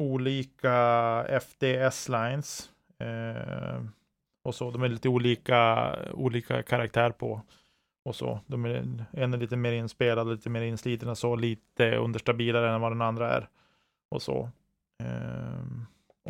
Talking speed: 135 wpm